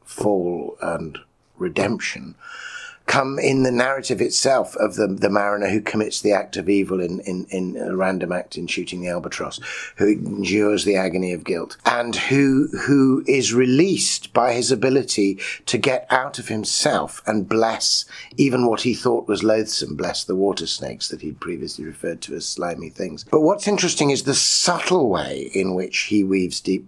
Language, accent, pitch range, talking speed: English, British, 95-125 Hz, 175 wpm